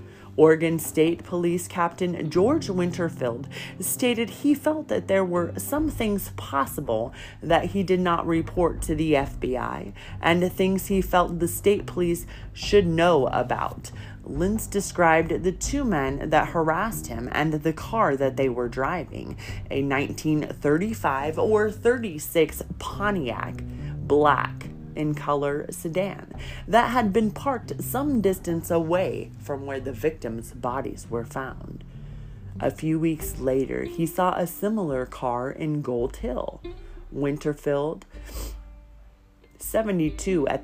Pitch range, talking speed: 135-180 Hz, 125 wpm